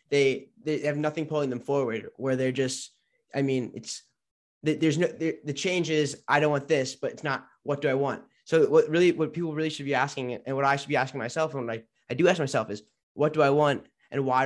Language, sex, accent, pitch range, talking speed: English, male, American, 125-140 Hz, 245 wpm